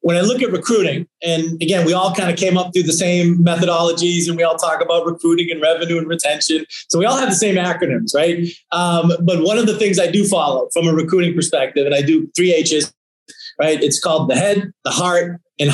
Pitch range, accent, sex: 155-180 Hz, American, male